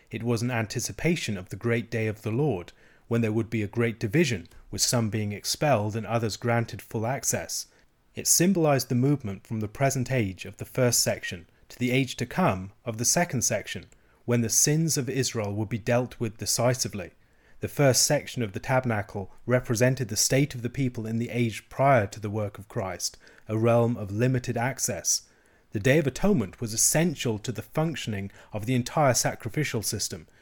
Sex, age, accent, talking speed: male, 30-49, British, 195 wpm